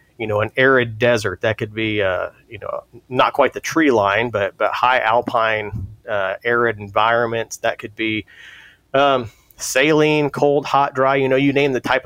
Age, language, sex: 30-49, English, male